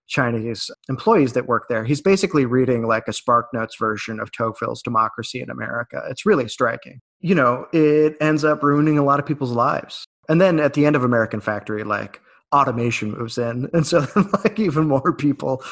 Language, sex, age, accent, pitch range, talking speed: English, male, 20-39, American, 115-150 Hz, 185 wpm